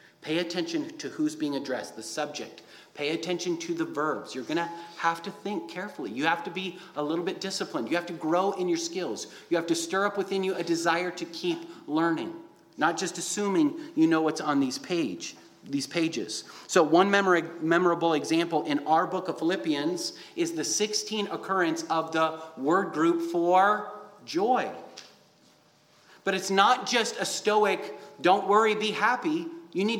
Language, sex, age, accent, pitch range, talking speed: English, male, 30-49, American, 165-210 Hz, 180 wpm